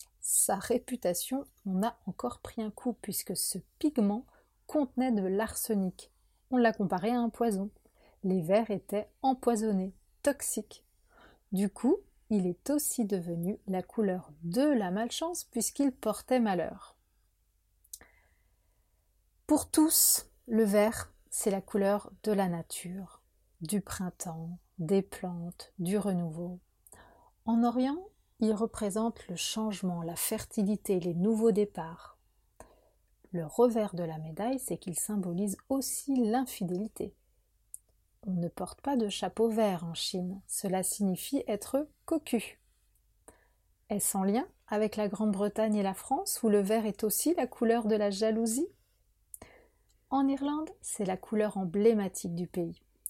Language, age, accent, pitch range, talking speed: French, 30-49, French, 180-230 Hz, 130 wpm